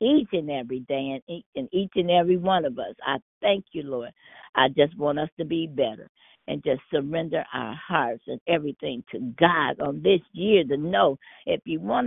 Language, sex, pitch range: English, female, 140-180 Hz